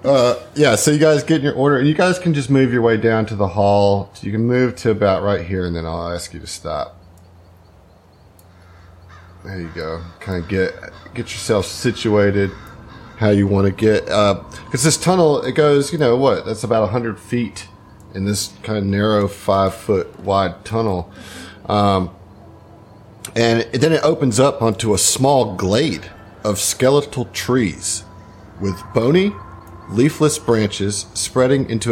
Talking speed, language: 175 wpm, English